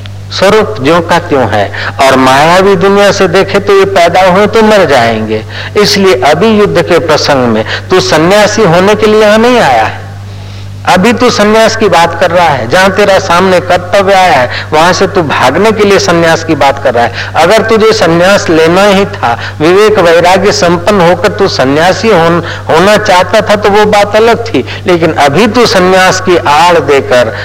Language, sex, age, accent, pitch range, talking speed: Hindi, male, 60-79, native, 145-210 Hz, 190 wpm